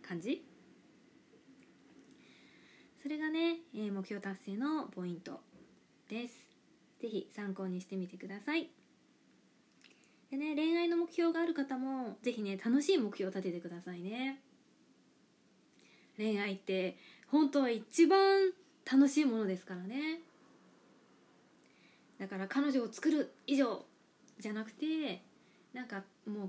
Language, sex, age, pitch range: Japanese, female, 20-39, 195-300 Hz